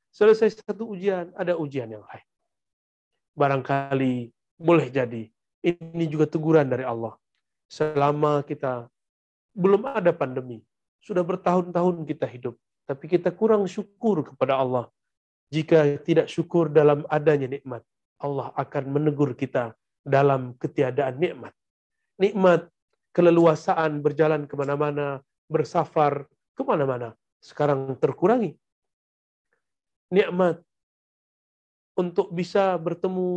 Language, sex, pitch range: Indonesian, male, 130-170 Hz